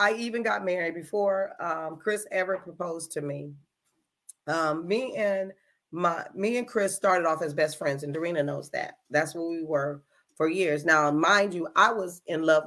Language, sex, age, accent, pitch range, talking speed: English, female, 40-59, American, 160-205 Hz, 180 wpm